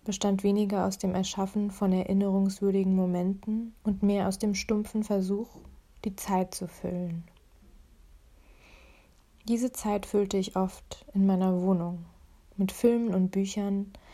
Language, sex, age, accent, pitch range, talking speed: German, female, 20-39, German, 165-200 Hz, 125 wpm